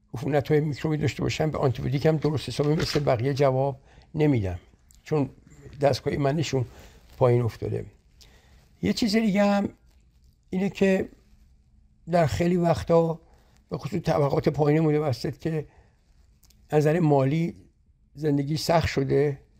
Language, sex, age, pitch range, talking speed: Persian, male, 60-79, 125-160 Hz, 120 wpm